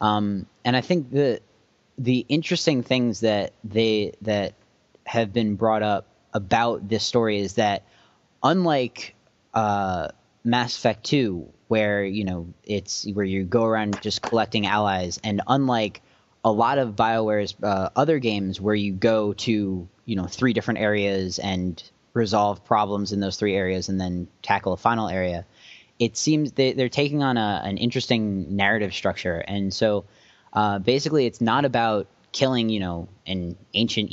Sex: male